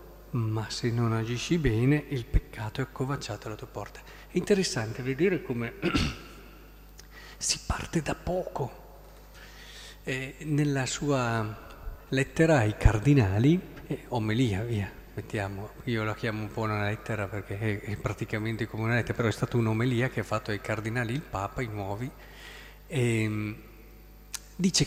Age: 40-59